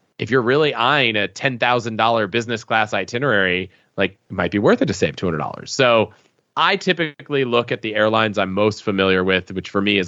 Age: 30-49